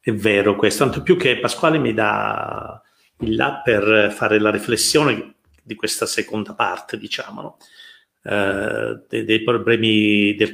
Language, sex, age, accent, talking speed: Italian, male, 50-69, native, 150 wpm